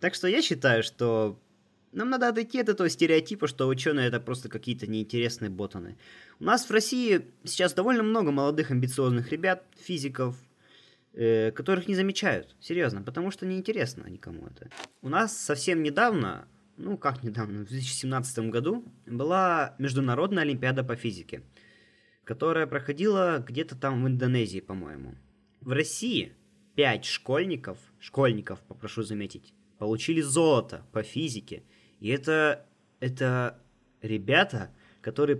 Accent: native